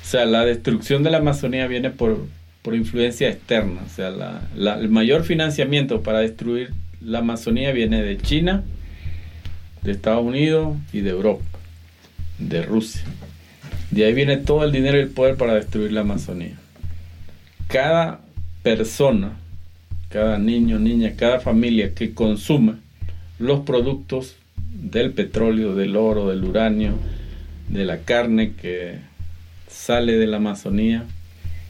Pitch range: 85-120 Hz